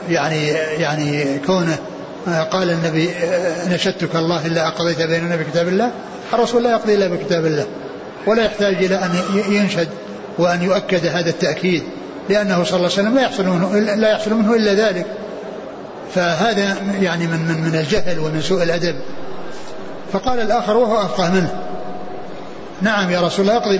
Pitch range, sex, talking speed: 170-205 Hz, male, 140 wpm